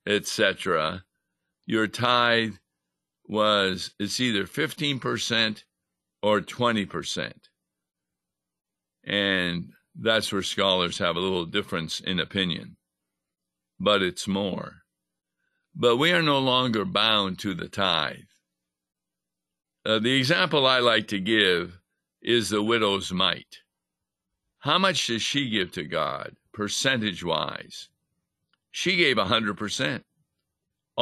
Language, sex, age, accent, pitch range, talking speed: English, male, 60-79, American, 95-120 Hz, 105 wpm